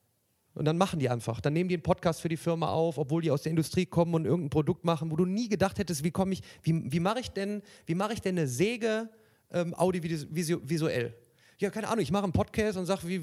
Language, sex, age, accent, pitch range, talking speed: German, male, 30-49, German, 150-190 Hz, 260 wpm